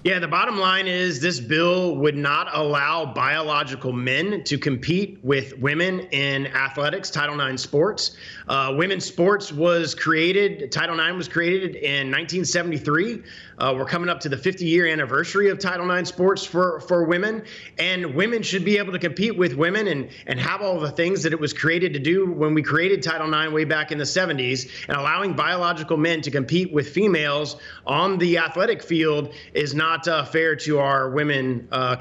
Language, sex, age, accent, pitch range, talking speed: English, male, 30-49, American, 145-175 Hz, 185 wpm